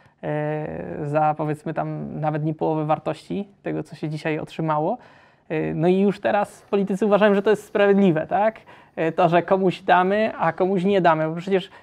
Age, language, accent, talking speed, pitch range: 20-39, Polish, native, 165 wpm, 165-215 Hz